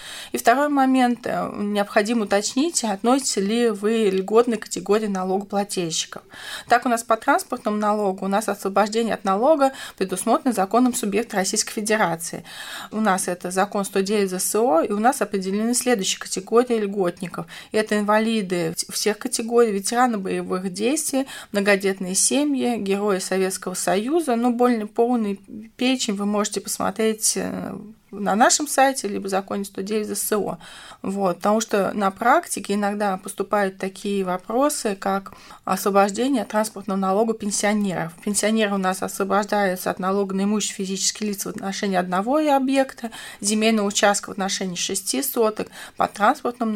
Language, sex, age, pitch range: Russian, female, 20-39, 195-225 Hz